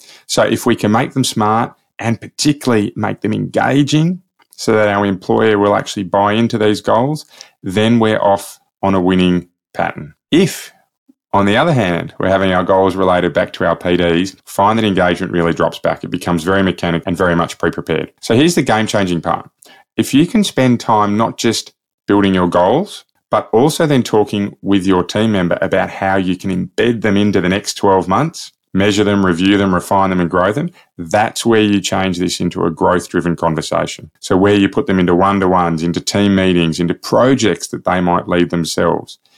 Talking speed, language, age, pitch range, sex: 190 wpm, English, 20-39, 90-115 Hz, male